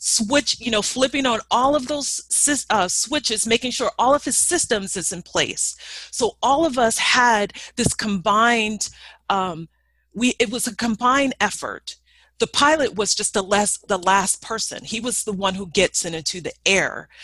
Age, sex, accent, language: 40-59, female, American, English